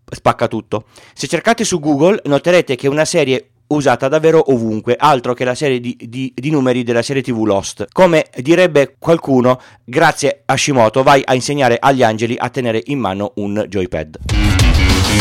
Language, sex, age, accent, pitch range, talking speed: Italian, male, 40-59, native, 115-150 Hz, 170 wpm